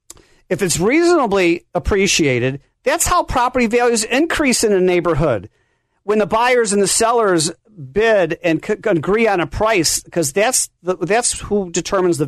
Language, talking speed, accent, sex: English, 150 wpm, American, male